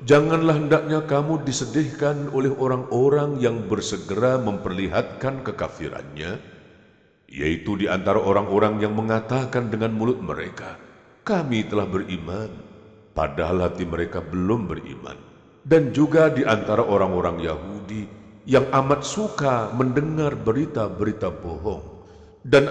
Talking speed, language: 105 wpm, Indonesian